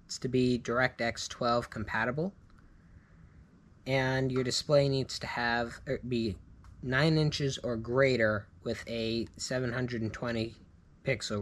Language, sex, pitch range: English, male, 85-120 Hz